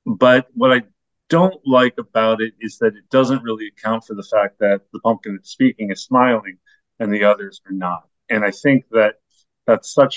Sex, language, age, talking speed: male, English, 40-59, 200 wpm